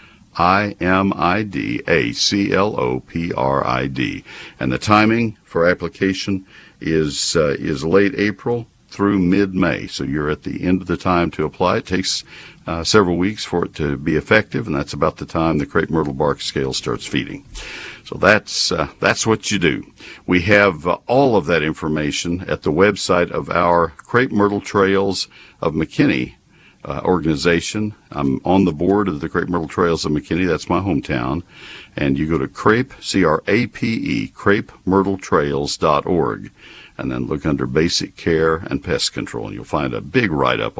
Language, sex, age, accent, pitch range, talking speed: English, male, 60-79, American, 80-100 Hz, 175 wpm